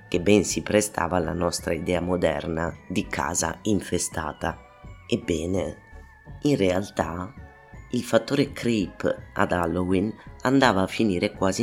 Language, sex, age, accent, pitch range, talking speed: Italian, female, 30-49, native, 85-100 Hz, 120 wpm